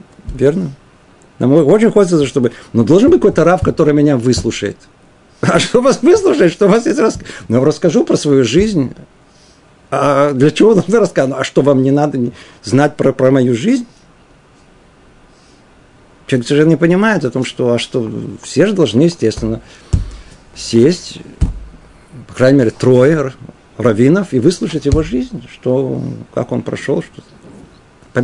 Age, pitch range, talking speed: 50-69, 125-170 Hz, 150 wpm